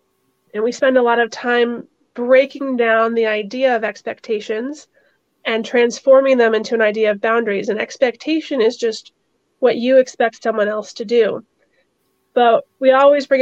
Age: 30-49